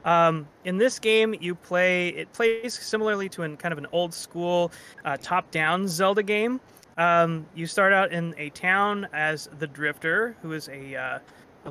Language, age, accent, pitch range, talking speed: English, 20-39, American, 150-180 Hz, 170 wpm